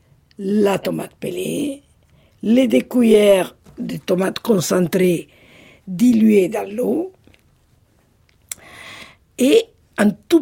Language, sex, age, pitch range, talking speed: French, female, 60-79, 180-235 Hz, 85 wpm